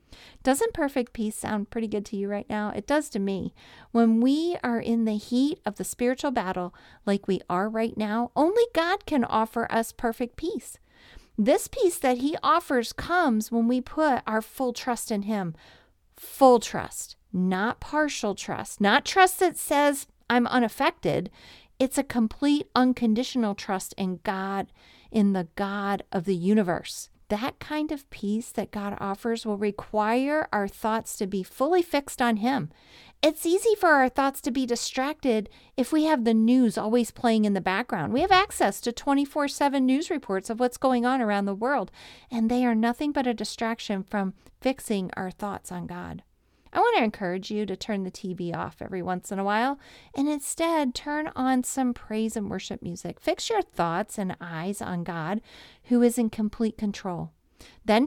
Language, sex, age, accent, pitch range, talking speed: English, female, 40-59, American, 205-275 Hz, 180 wpm